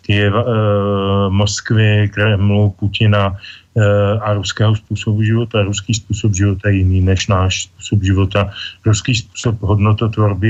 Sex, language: male, Slovak